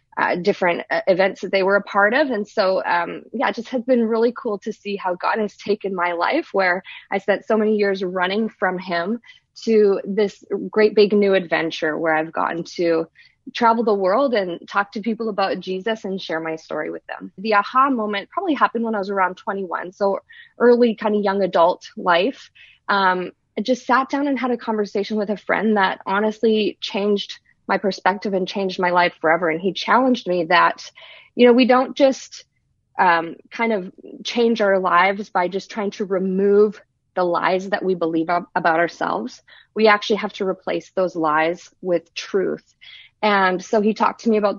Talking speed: 190 wpm